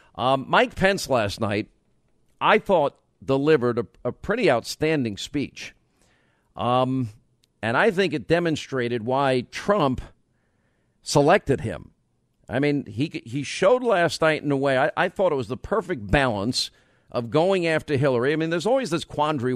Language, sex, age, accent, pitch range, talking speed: English, male, 50-69, American, 125-150 Hz, 155 wpm